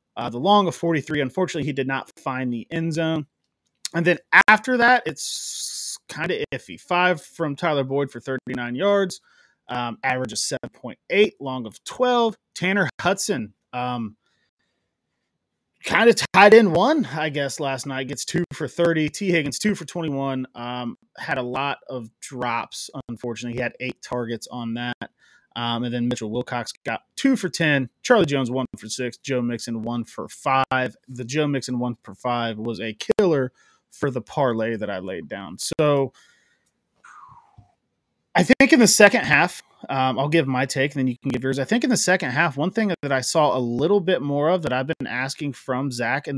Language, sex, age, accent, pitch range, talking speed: English, male, 30-49, American, 125-165 Hz, 185 wpm